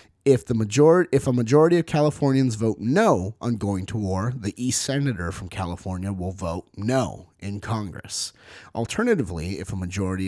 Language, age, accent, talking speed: English, 30-49, American, 165 wpm